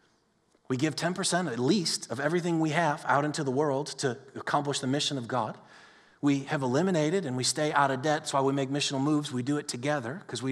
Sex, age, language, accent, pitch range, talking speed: male, 30-49, English, American, 140-195 Hz, 230 wpm